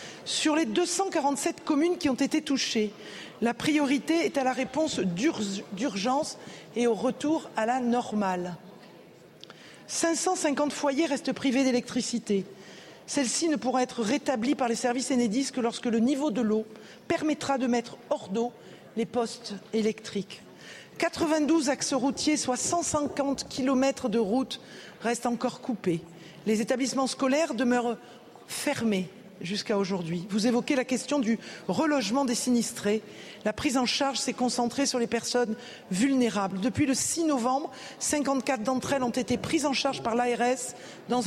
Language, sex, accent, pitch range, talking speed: French, female, French, 230-280 Hz, 145 wpm